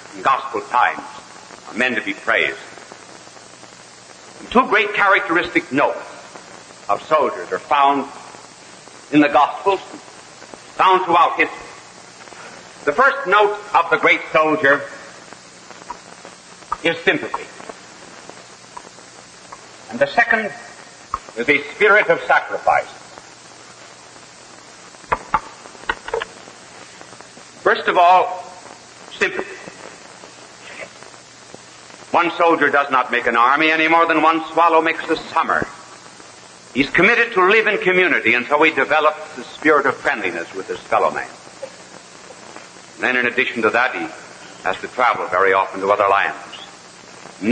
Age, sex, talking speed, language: 60-79, male, 115 wpm, English